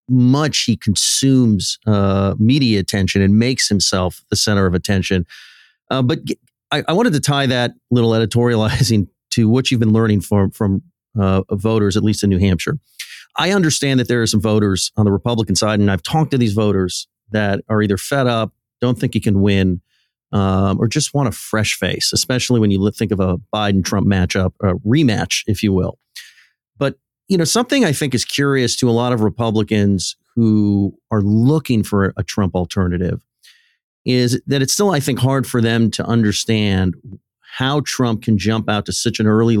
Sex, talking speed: male, 185 wpm